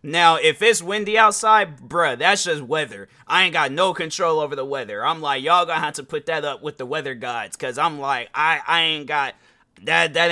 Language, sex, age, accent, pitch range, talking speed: English, male, 20-39, American, 145-230 Hz, 225 wpm